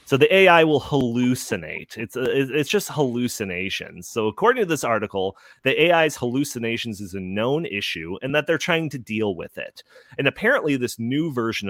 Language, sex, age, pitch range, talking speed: English, male, 30-49, 105-150 Hz, 180 wpm